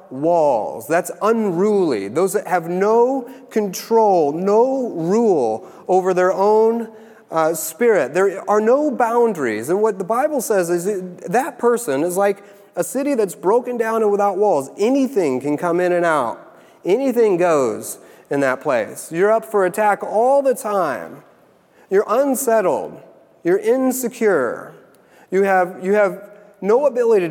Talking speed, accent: 140 wpm, American